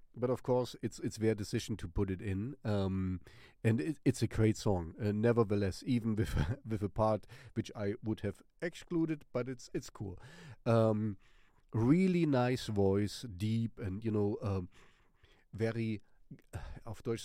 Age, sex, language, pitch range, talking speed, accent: 40-59, male, English, 100-120 Hz, 165 wpm, German